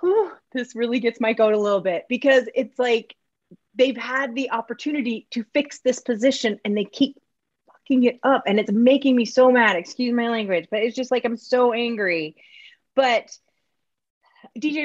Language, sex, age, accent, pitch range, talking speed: English, female, 30-49, American, 205-260 Hz, 180 wpm